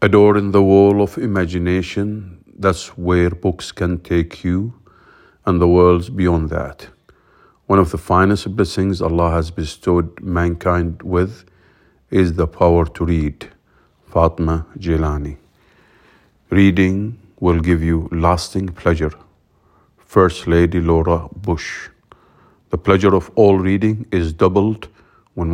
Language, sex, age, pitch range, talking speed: English, male, 50-69, 85-95 Hz, 125 wpm